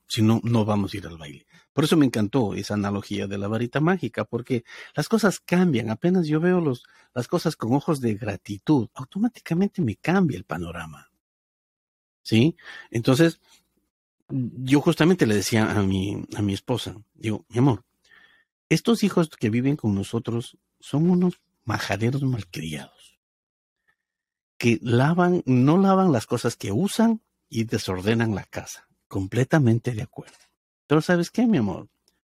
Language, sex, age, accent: Spanish, male, 50-69, Mexican